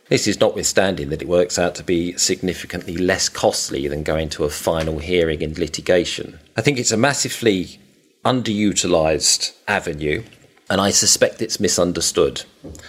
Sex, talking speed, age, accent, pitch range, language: male, 150 wpm, 40-59, British, 85-110 Hz, English